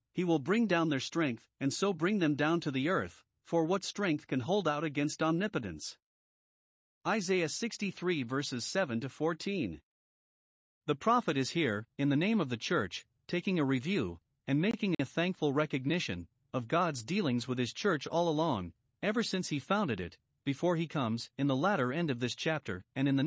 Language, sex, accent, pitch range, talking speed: English, male, American, 130-175 Hz, 185 wpm